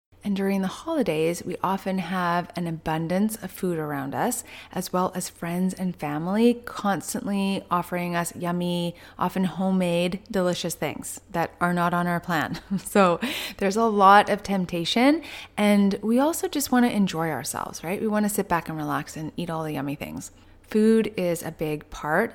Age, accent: 30-49, American